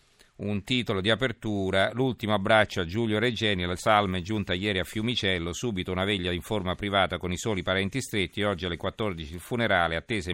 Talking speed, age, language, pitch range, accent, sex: 185 wpm, 50-69, Italian, 95-115 Hz, native, male